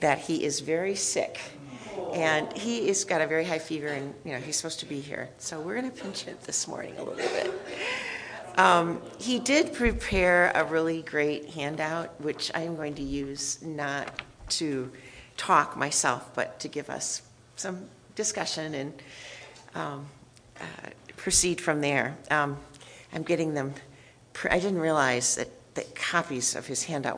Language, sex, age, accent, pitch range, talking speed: English, female, 40-59, American, 135-190 Hz, 165 wpm